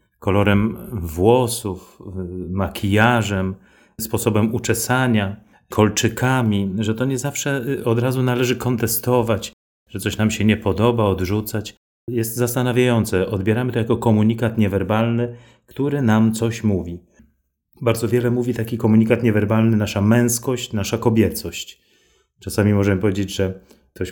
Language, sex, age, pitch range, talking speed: Polish, male, 30-49, 100-115 Hz, 115 wpm